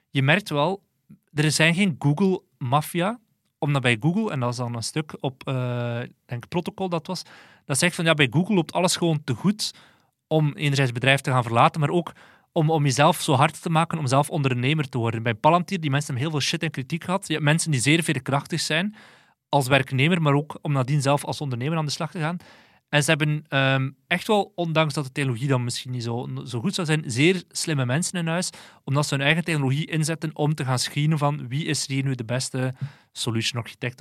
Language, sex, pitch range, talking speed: Dutch, male, 135-160 Hz, 225 wpm